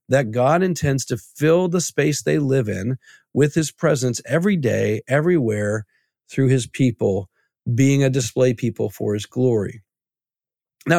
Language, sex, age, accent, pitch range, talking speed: English, male, 40-59, American, 120-150 Hz, 145 wpm